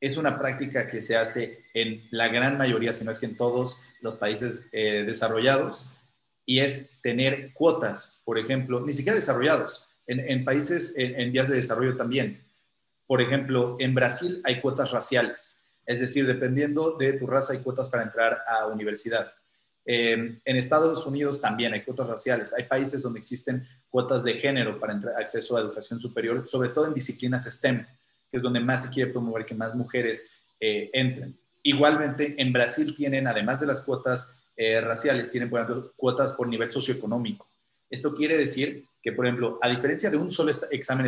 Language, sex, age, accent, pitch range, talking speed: Spanish, male, 30-49, Mexican, 120-140 Hz, 180 wpm